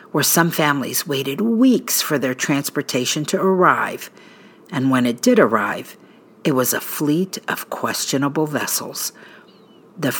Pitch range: 140-195 Hz